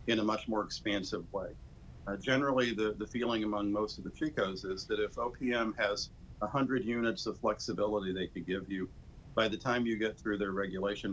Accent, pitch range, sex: American, 90-110 Hz, male